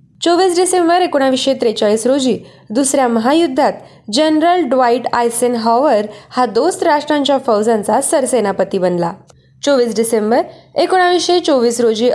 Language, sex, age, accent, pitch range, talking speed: Marathi, female, 20-39, native, 220-295 Hz, 110 wpm